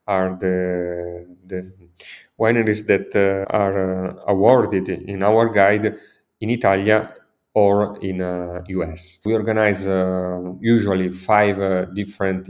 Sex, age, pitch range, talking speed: male, 30-49, 95-115 Hz, 120 wpm